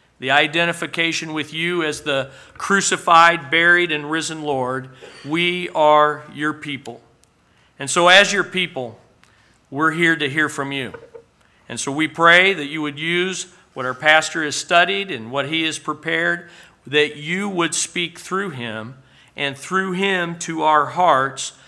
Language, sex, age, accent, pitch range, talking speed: English, male, 50-69, American, 130-165 Hz, 155 wpm